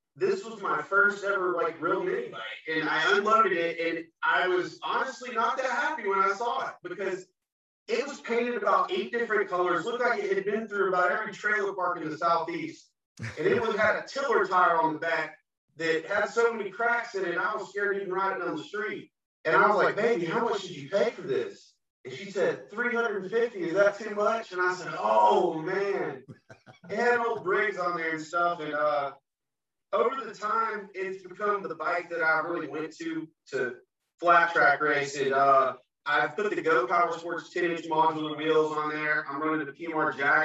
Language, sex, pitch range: English, male, 155-210 Hz